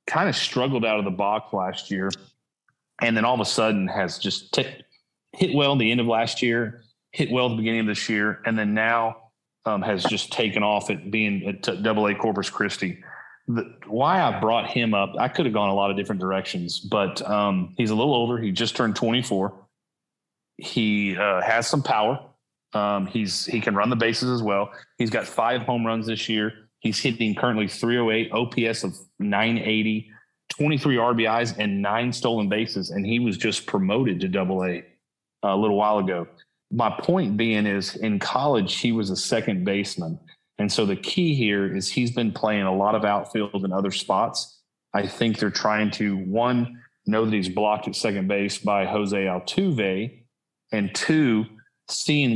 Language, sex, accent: English, male, American